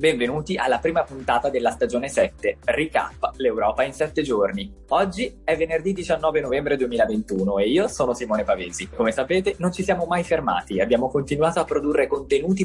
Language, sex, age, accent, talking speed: Italian, male, 20-39, native, 165 wpm